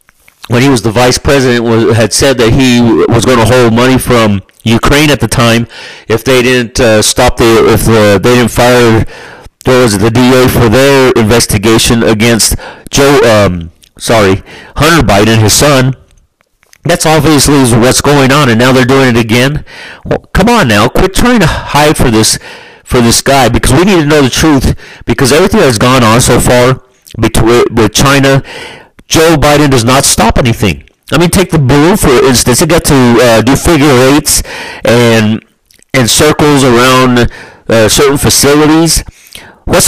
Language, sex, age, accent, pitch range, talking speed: English, male, 40-59, American, 115-140 Hz, 175 wpm